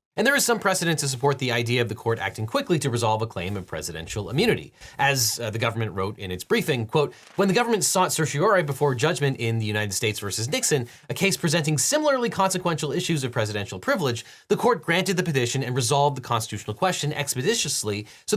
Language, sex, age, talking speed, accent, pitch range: English, male, 30-49, 210 wpm, American, 120-185 Hz